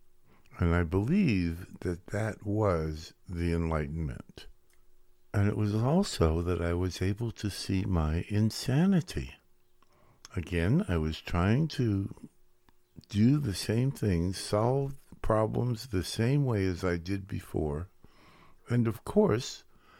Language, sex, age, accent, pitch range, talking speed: English, male, 60-79, American, 80-110 Hz, 125 wpm